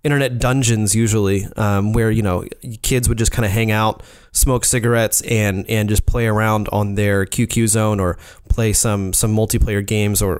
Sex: male